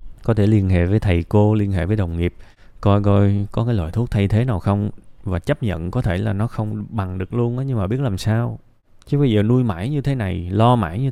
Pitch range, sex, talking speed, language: 95-120 Hz, male, 270 wpm, Vietnamese